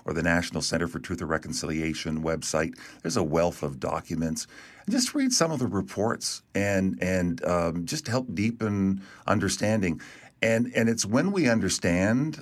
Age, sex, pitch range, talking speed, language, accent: 50-69, male, 80-100 Hz, 160 wpm, English, American